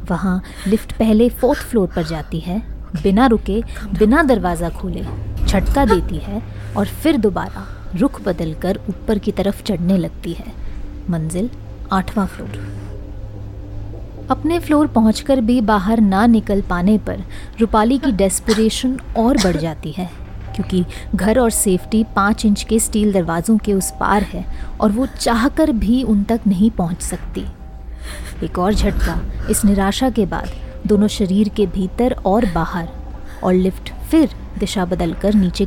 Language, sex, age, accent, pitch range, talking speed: Hindi, female, 20-39, native, 170-225 Hz, 150 wpm